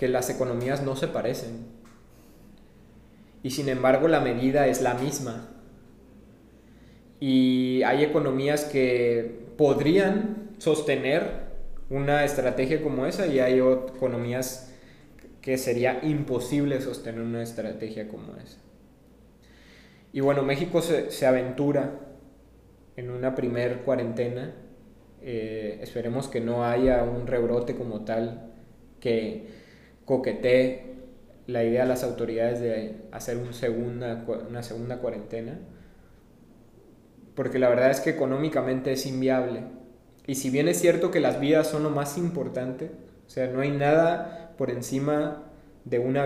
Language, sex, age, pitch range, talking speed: Spanish, male, 20-39, 120-140 Hz, 125 wpm